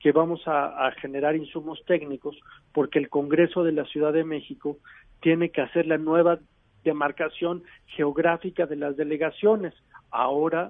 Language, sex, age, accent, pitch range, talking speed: Spanish, male, 50-69, Mexican, 140-175 Hz, 145 wpm